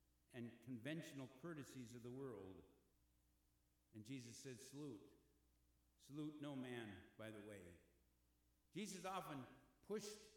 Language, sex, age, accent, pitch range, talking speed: English, male, 60-79, American, 115-160 Hz, 110 wpm